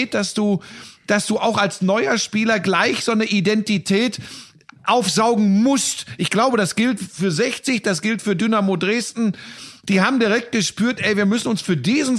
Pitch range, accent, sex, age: 155-210 Hz, German, male, 40-59